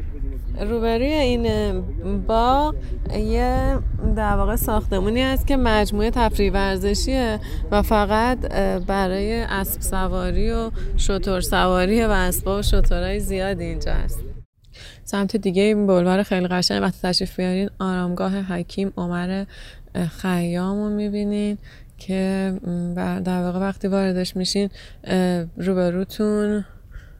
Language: Persian